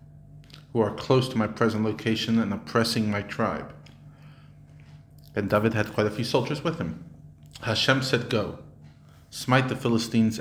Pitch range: 110-145 Hz